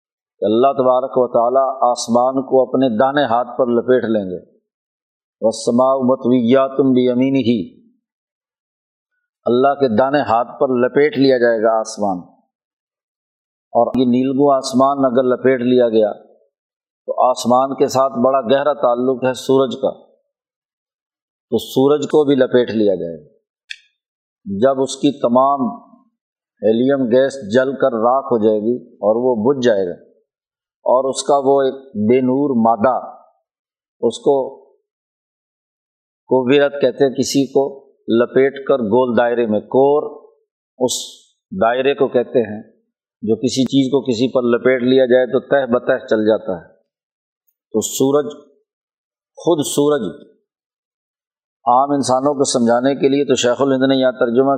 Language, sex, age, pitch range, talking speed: Urdu, male, 50-69, 125-140 Hz, 140 wpm